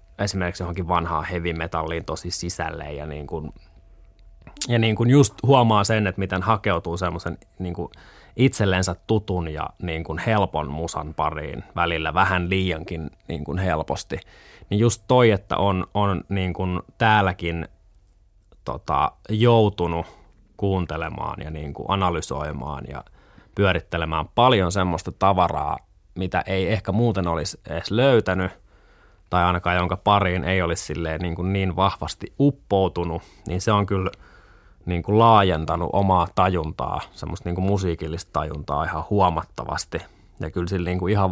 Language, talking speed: Finnish, 135 wpm